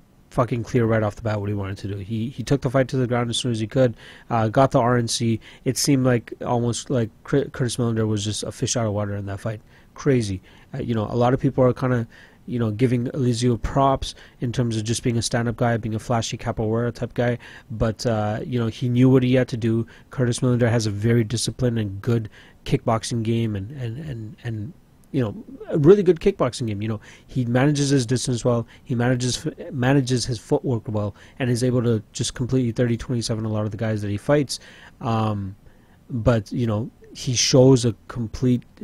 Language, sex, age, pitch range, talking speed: English, male, 30-49, 110-130 Hz, 225 wpm